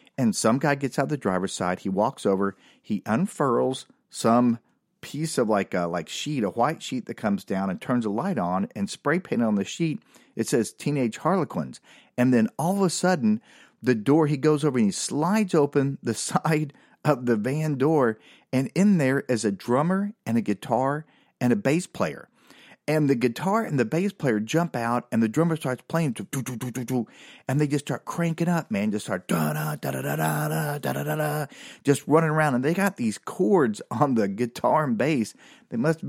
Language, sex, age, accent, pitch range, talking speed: English, male, 40-59, American, 115-165 Hz, 195 wpm